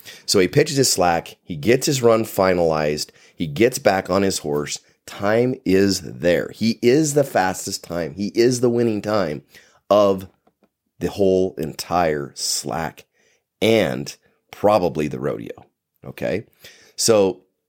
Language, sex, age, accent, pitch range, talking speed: English, male, 30-49, American, 75-110 Hz, 135 wpm